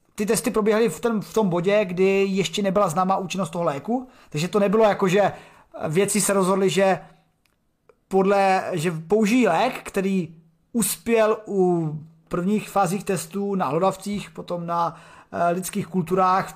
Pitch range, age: 175-205 Hz, 30-49